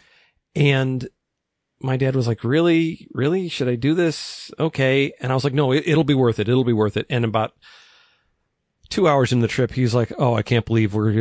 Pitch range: 110-135 Hz